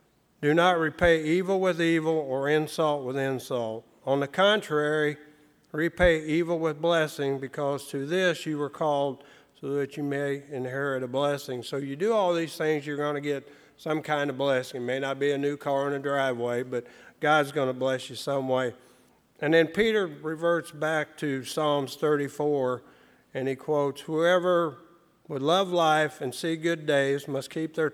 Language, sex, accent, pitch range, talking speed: English, male, American, 130-155 Hz, 180 wpm